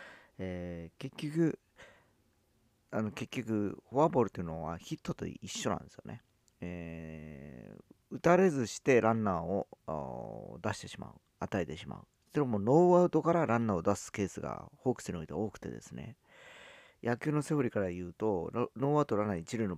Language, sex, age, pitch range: Japanese, male, 40-59, 90-130 Hz